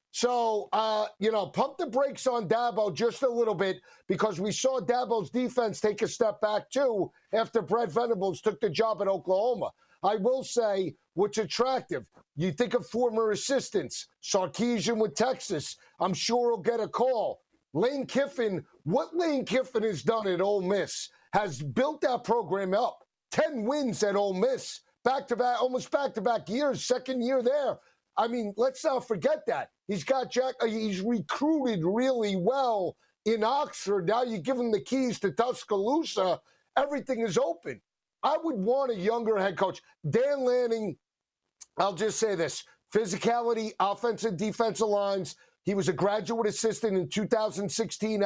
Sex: male